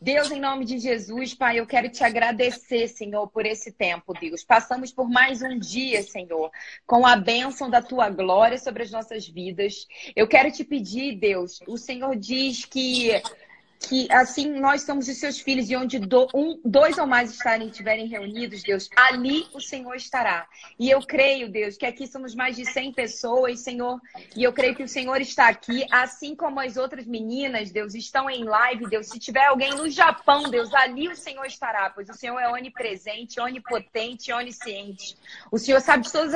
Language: Portuguese